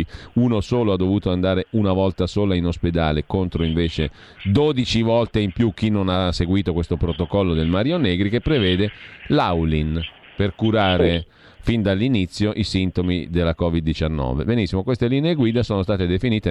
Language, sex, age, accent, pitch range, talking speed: Italian, male, 40-59, native, 90-115 Hz, 155 wpm